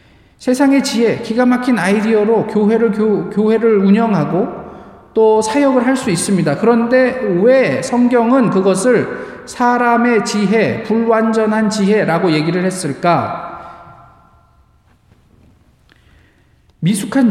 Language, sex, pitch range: Korean, male, 170-235 Hz